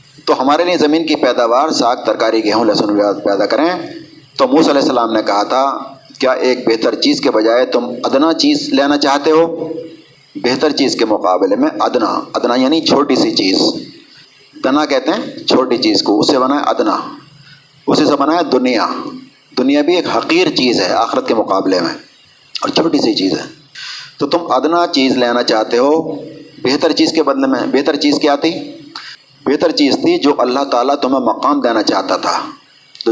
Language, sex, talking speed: Urdu, male, 185 wpm